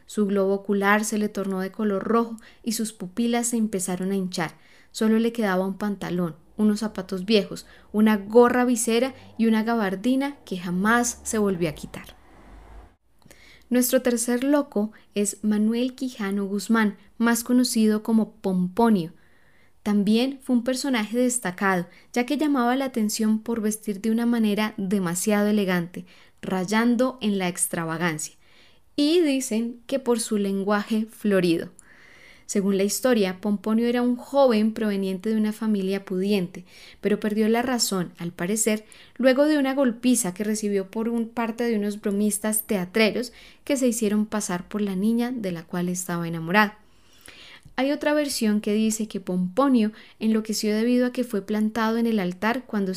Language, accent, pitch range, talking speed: Spanish, Colombian, 195-235 Hz, 150 wpm